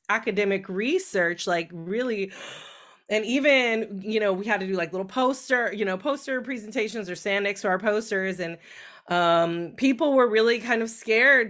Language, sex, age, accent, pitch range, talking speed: English, female, 20-39, American, 175-215 Hz, 170 wpm